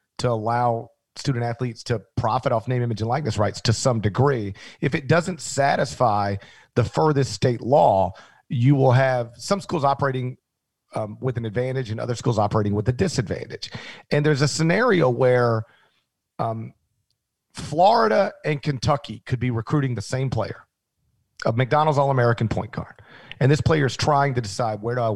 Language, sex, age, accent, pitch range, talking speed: English, male, 40-59, American, 115-140 Hz, 165 wpm